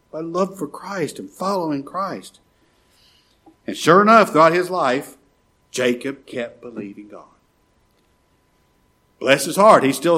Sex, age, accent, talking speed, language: male, 60-79, American, 130 wpm, English